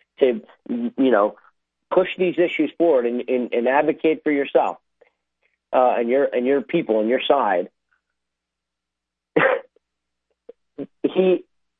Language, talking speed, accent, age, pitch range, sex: English, 115 wpm, American, 40-59, 120-175 Hz, male